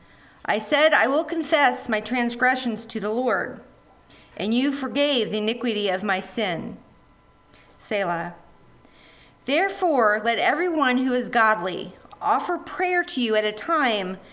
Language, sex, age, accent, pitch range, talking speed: English, female, 40-59, American, 215-290 Hz, 135 wpm